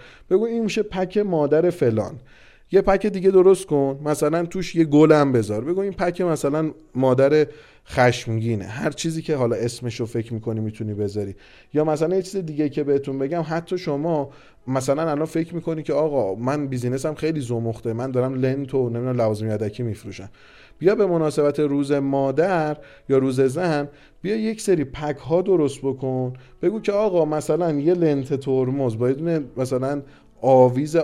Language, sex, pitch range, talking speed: Persian, male, 125-160 Hz, 160 wpm